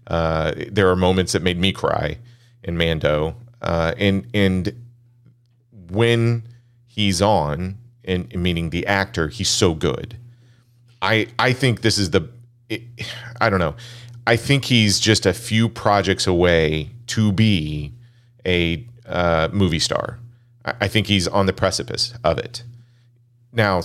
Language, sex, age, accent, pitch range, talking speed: English, male, 40-59, American, 90-120 Hz, 145 wpm